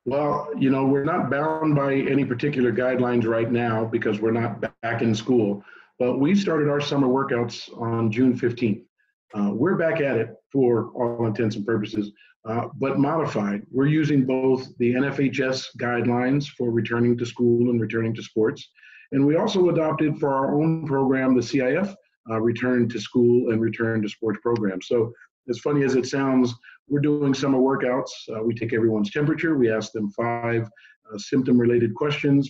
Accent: American